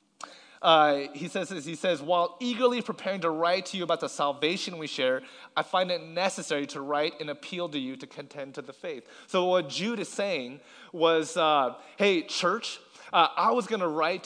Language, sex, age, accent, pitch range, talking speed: English, male, 30-49, American, 165-225 Hz, 200 wpm